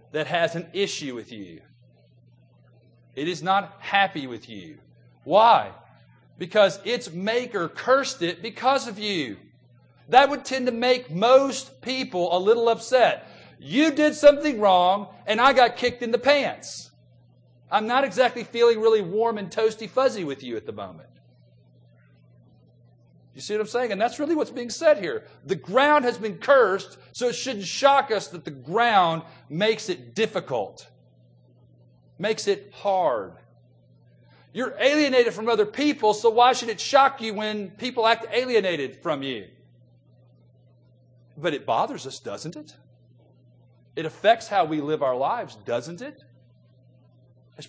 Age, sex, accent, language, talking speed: 40-59, male, American, English, 150 wpm